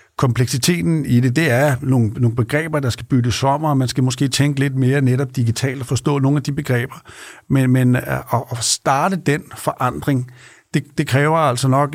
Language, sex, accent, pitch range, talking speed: Danish, male, native, 125-145 Hz, 195 wpm